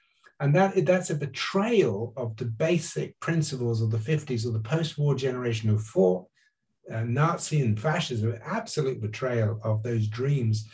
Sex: male